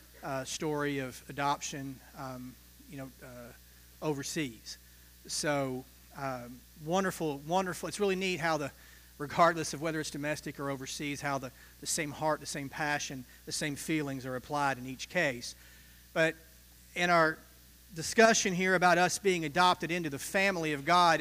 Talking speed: 155 wpm